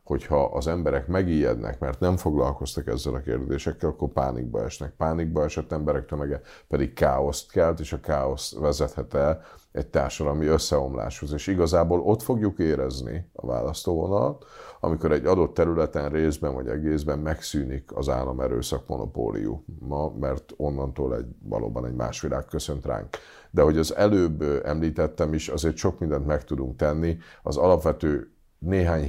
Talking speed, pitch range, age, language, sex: 145 wpm, 70-80 Hz, 50-69, Hungarian, male